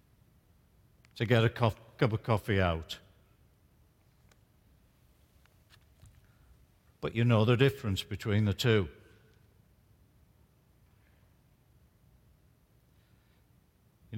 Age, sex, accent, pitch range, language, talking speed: 60-79, male, British, 105-140 Hz, English, 70 wpm